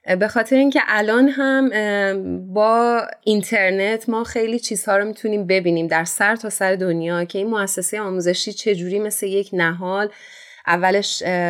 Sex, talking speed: female, 140 wpm